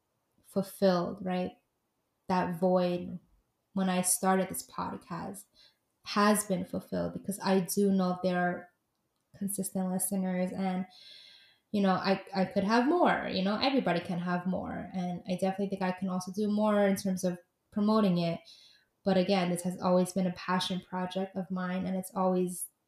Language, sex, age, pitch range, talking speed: English, female, 20-39, 185-200 Hz, 165 wpm